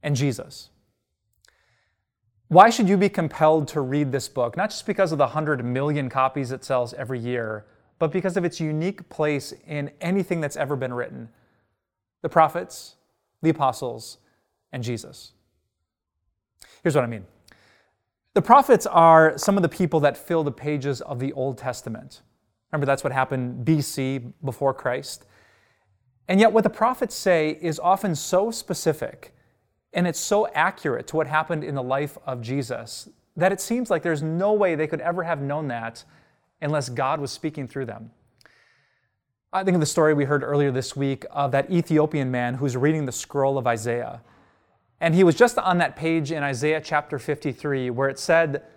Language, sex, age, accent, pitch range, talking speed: English, male, 30-49, American, 125-165 Hz, 175 wpm